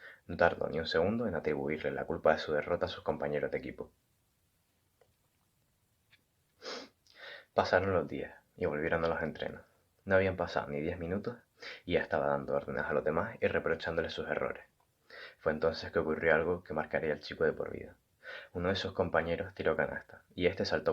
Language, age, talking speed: Spanish, 20-39, 185 wpm